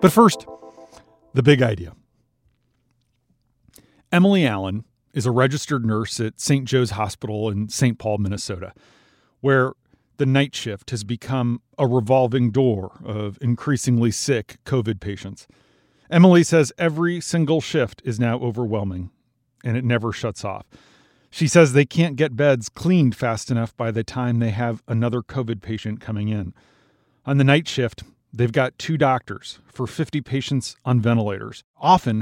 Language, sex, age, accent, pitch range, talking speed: English, male, 40-59, American, 110-140 Hz, 145 wpm